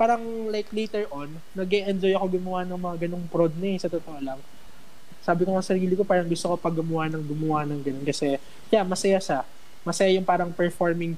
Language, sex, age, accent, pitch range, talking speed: Filipino, male, 20-39, native, 165-195 Hz, 205 wpm